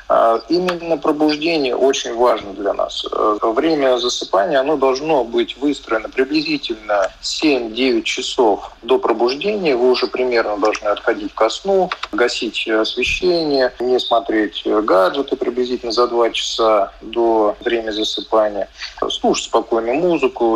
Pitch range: 120-165 Hz